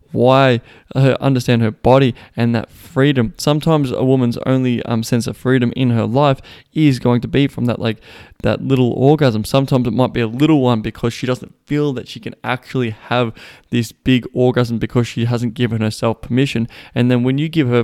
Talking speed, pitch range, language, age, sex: 200 wpm, 110-125 Hz, English, 20-39, male